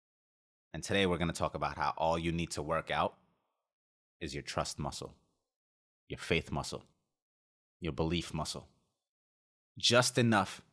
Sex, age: male, 30-49